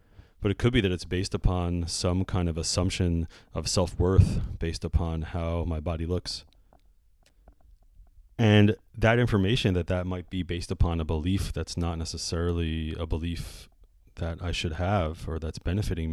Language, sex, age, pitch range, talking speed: English, male, 30-49, 80-95 Hz, 160 wpm